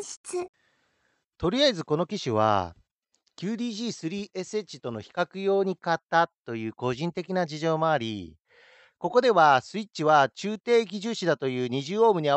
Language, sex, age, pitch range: Japanese, male, 40-59, 135-220 Hz